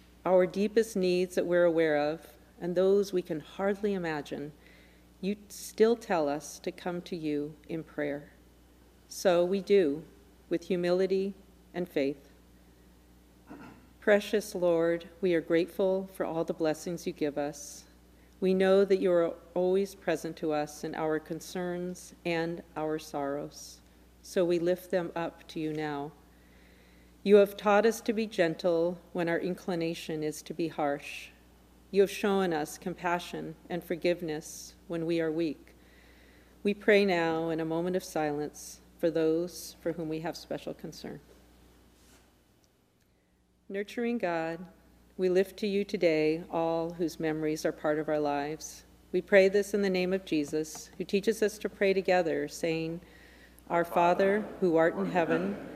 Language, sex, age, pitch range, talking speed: English, female, 50-69, 150-185 Hz, 155 wpm